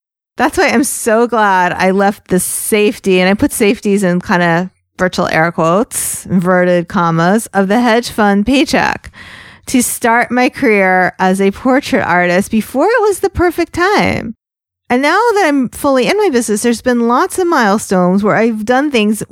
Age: 40-59